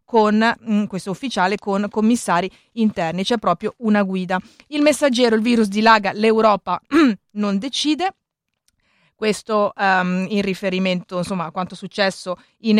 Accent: native